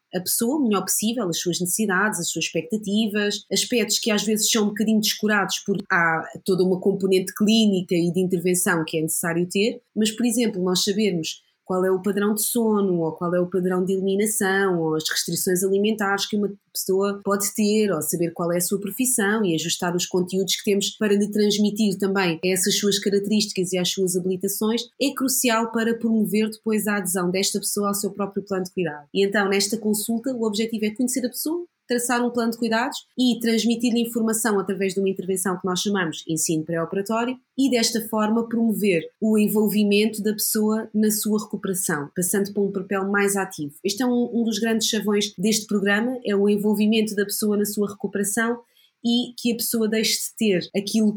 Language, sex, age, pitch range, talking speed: Portuguese, female, 20-39, 190-220 Hz, 195 wpm